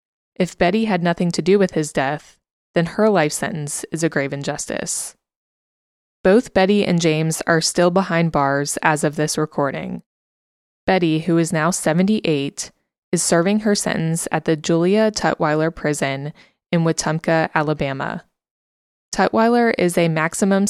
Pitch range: 150-180 Hz